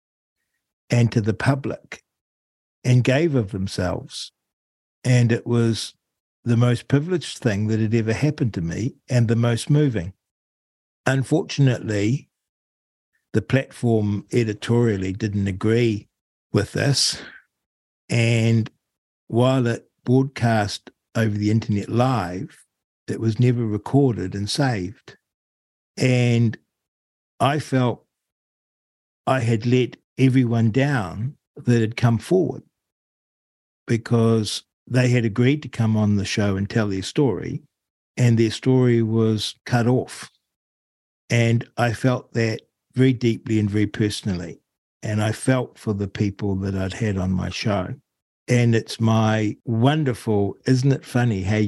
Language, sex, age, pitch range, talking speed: English, male, 60-79, 100-125 Hz, 125 wpm